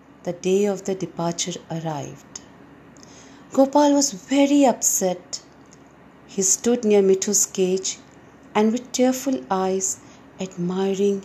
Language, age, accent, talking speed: English, 50-69, Indian, 105 wpm